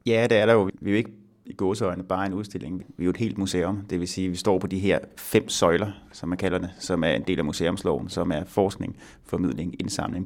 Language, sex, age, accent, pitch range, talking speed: Danish, male, 30-49, native, 90-105 Hz, 270 wpm